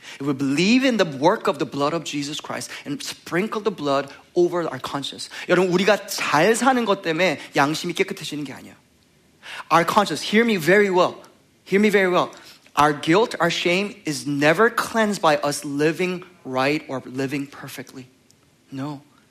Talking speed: 170 wpm